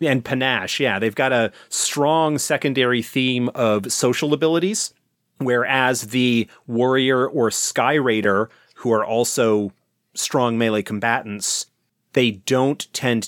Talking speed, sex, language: 115 wpm, male, English